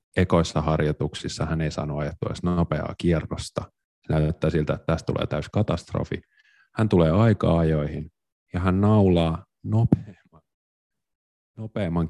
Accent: native